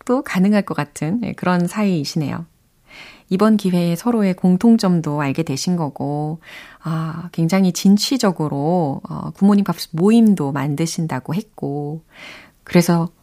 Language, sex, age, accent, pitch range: Korean, female, 30-49, native, 160-235 Hz